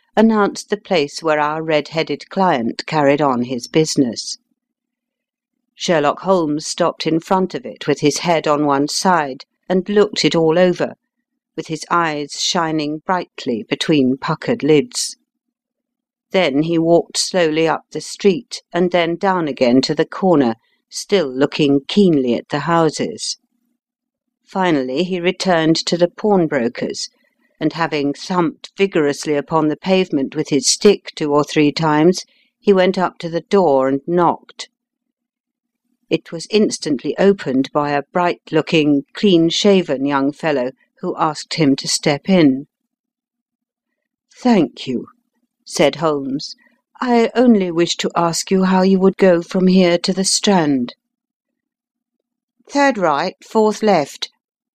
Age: 60-79